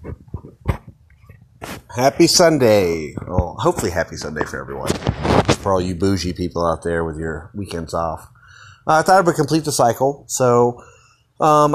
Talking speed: 150 wpm